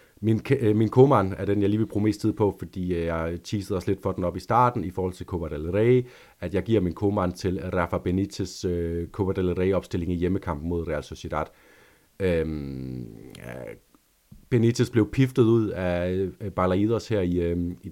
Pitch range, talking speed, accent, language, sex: 85-105 Hz, 170 wpm, native, Danish, male